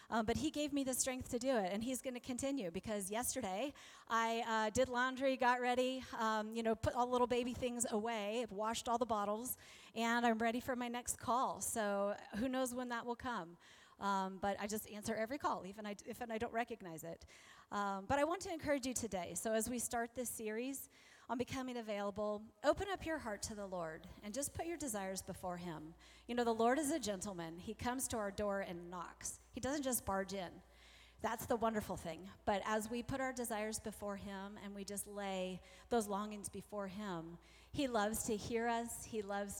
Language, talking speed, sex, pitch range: English, 215 wpm, female, 200-255 Hz